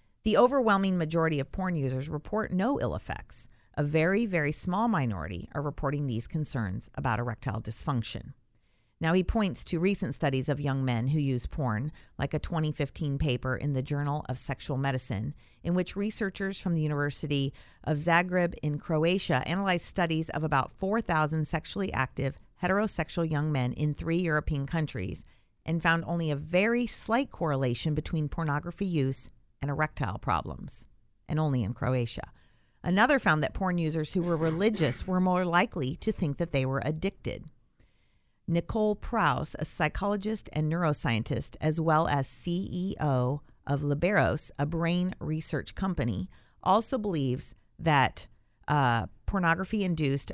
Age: 40-59